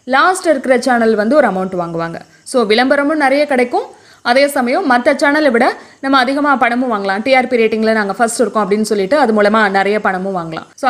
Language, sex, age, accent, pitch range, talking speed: Tamil, female, 20-39, native, 210-285 Hz, 180 wpm